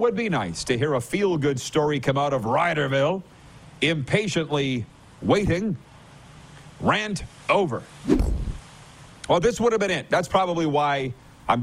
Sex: male